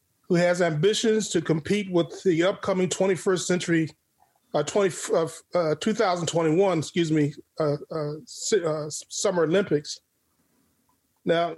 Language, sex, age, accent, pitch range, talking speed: English, male, 30-49, American, 155-195 Hz, 115 wpm